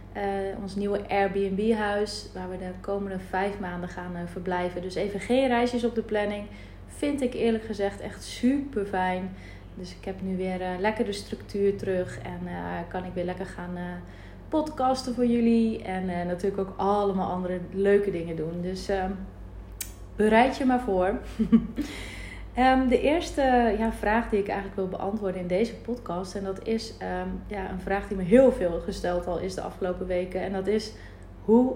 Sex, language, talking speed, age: female, Dutch, 175 wpm, 30-49